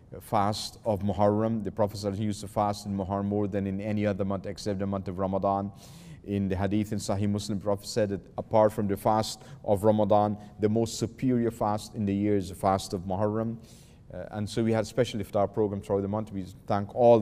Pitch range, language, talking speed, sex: 100-110 Hz, English, 215 wpm, male